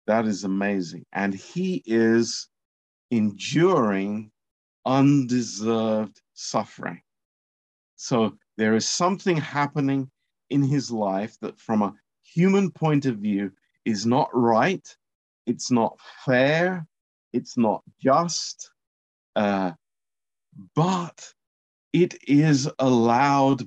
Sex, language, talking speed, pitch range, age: male, Romanian, 95 wpm, 105-155 Hz, 50-69